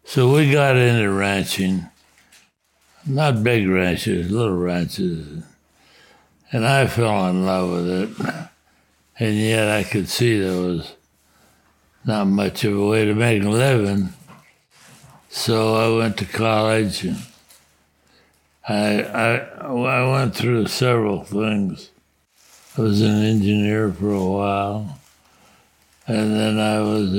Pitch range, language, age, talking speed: 95-110 Hz, English, 60-79, 125 wpm